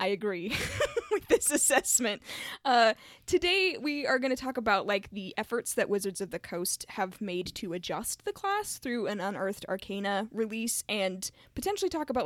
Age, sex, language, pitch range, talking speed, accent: 10-29, female, English, 185-245 Hz, 170 wpm, American